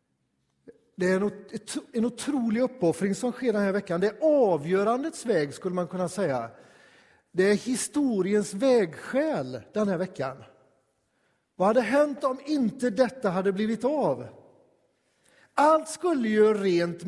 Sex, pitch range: male, 165-220 Hz